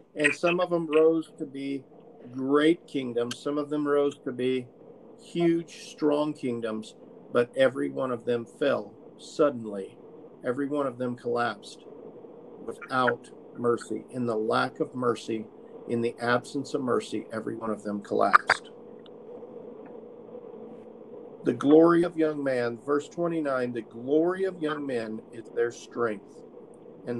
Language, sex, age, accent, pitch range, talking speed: English, male, 50-69, American, 120-160 Hz, 140 wpm